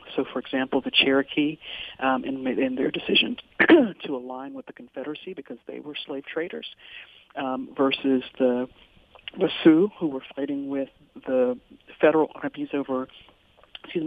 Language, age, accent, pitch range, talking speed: English, 60-79, American, 135-190 Hz, 150 wpm